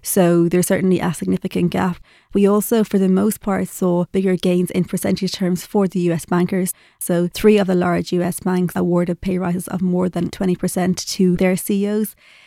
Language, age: English, 20-39